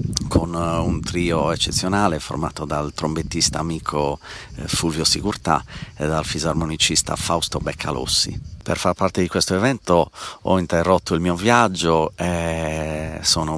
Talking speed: 125 wpm